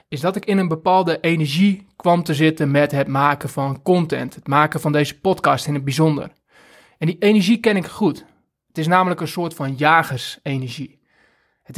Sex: male